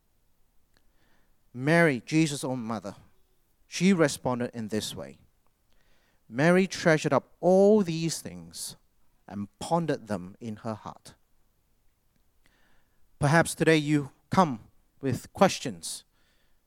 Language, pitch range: English, 100-160 Hz